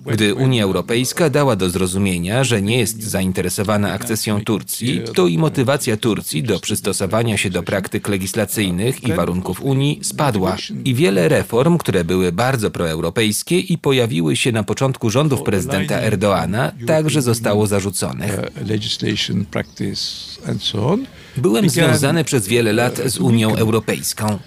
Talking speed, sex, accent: 130 wpm, male, native